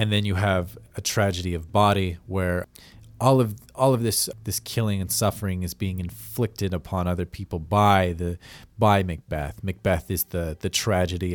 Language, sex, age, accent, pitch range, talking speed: English, male, 30-49, American, 90-110 Hz, 175 wpm